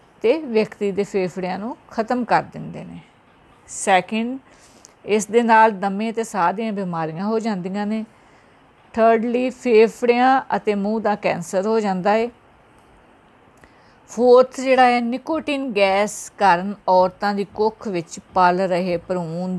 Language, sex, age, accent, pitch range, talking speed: English, female, 50-69, Indian, 190-225 Hz, 125 wpm